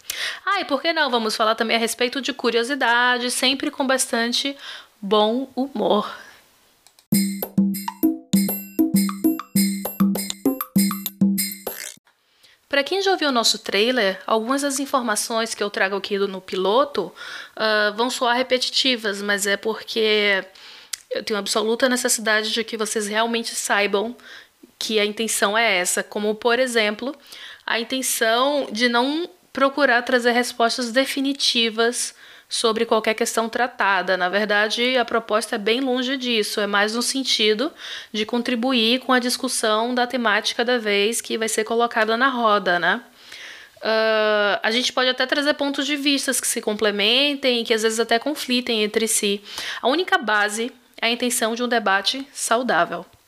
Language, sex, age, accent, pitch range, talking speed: Portuguese, female, 10-29, Brazilian, 215-255 Hz, 140 wpm